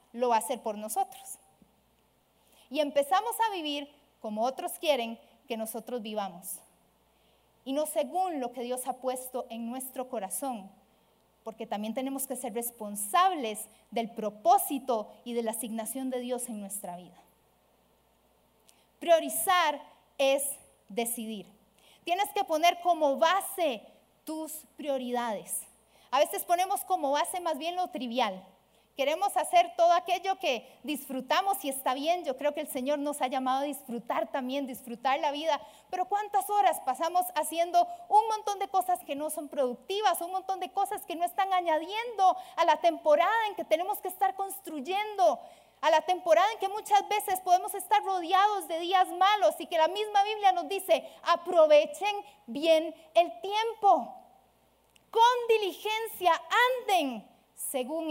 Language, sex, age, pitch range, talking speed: Spanish, female, 40-59, 255-370 Hz, 150 wpm